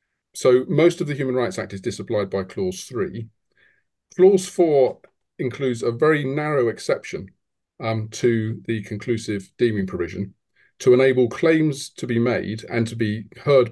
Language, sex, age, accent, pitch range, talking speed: English, male, 40-59, British, 110-125 Hz, 155 wpm